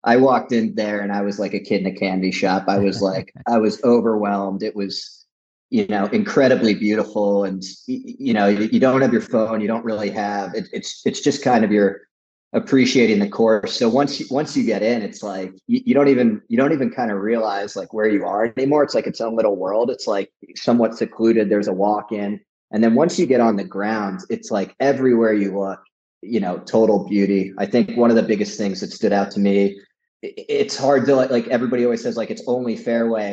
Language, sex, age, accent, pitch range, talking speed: English, male, 30-49, American, 100-120 Hz, 225 wpm